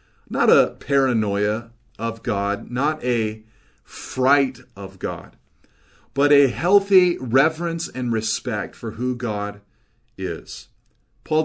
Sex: male